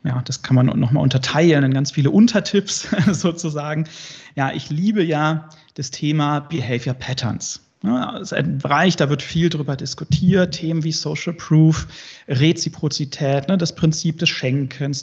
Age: 30-49